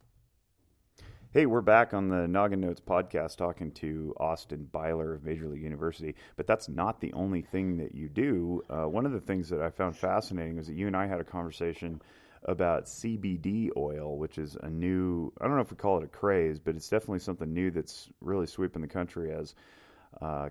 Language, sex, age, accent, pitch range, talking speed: English, male, 30-49, American, 80-95 Hz, 205 wpm